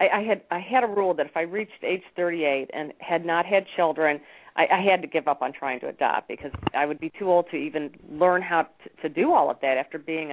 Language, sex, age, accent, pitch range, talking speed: English, female, 40-59, American, 155-185 Hz, 255 wpm